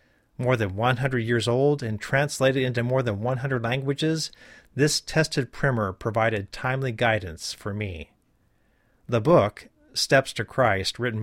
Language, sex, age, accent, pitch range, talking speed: English, male, 40-59, American, 110-140 Hz, 140 wpm